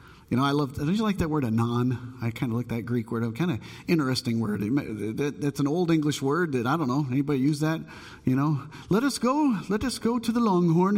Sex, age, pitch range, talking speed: male, 40-59, 135-190 Hz, 240 wpm